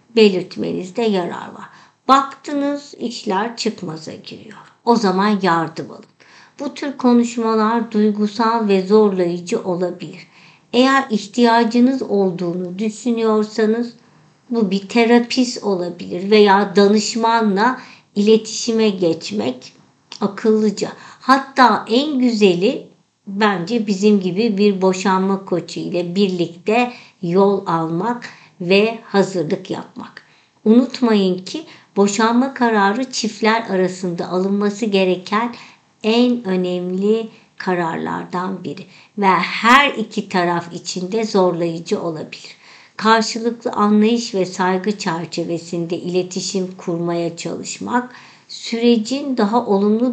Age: 60-79